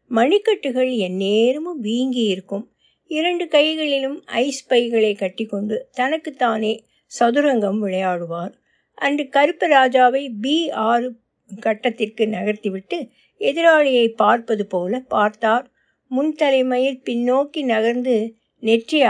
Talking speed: 90 wpm